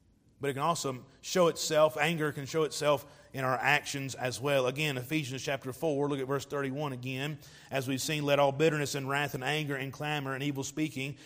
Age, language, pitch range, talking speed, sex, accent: 30-49, English, 140-195 Hz, 210 wpm, male, American